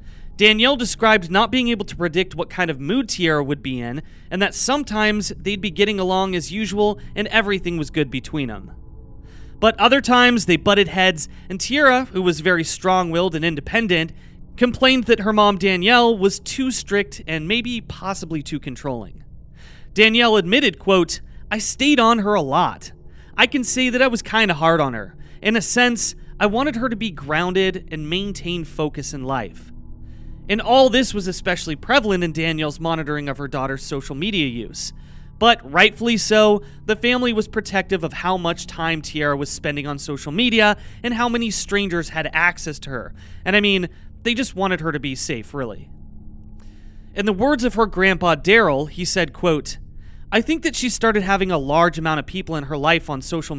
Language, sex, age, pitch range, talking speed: English, male, 30-49, 150-215 Hz, 190 wpm